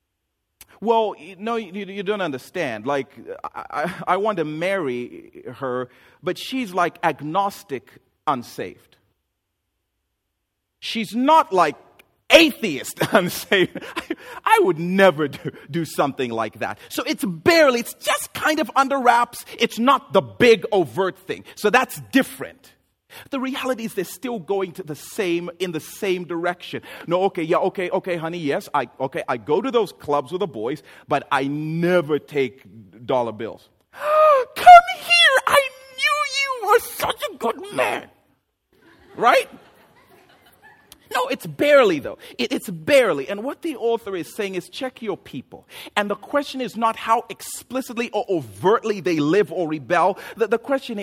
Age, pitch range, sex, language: 40-59, 145-240 Hz, male, English